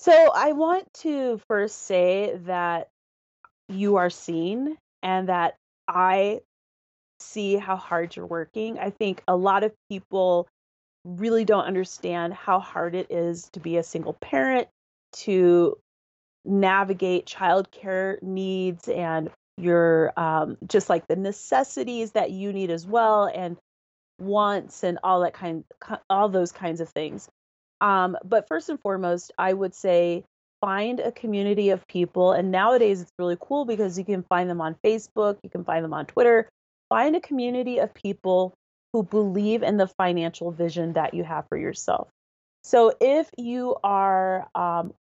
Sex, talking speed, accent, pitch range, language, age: female, 155 wpm, American, 175-210 Hz, English, 30-49